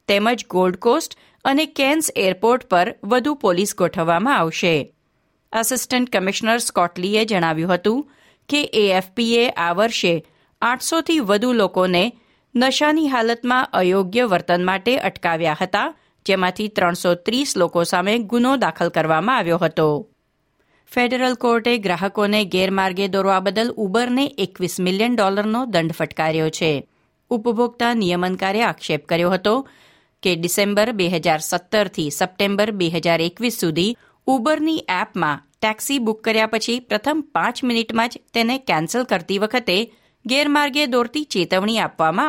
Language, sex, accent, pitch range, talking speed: Gujarati, female, native, 175-245 Hz, 110 wpm